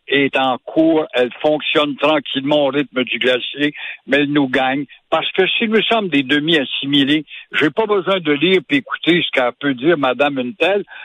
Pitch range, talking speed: 140-205 Hz, 195 wpm